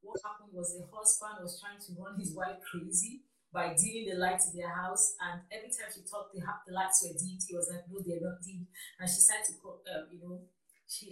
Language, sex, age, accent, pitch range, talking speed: English, female, 40-59, Nigerian, 180-245 Hz, 230 wpm